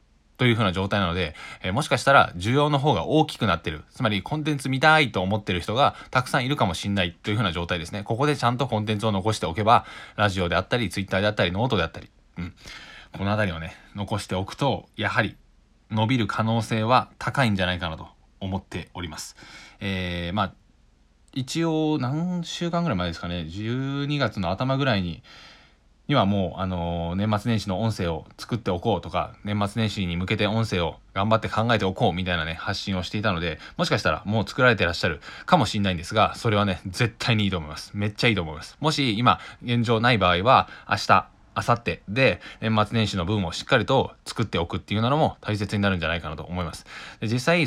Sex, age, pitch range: male, 20-39, 90-120 Hz